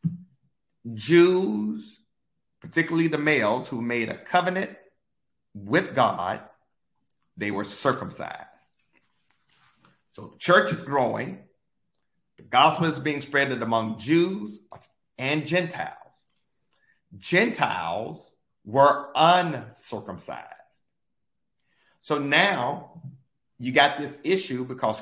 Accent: American